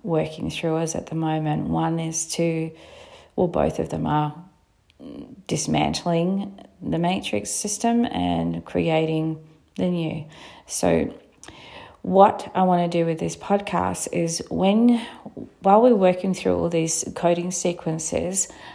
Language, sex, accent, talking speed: English, female, Australian, 130 wpm